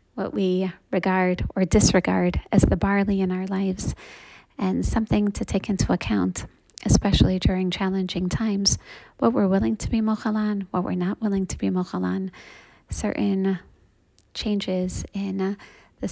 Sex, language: female, English